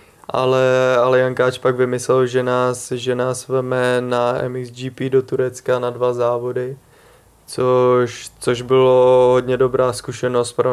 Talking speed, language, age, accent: 135 wpm, Czech, 20-39, native